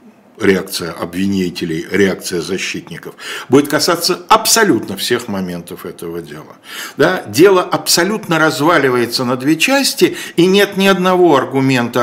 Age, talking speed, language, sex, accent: 60-79, 110 wpm, Russian, male, native